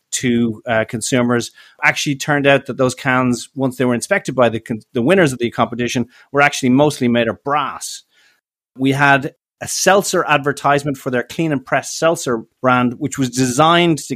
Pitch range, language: 120-145 Hz, English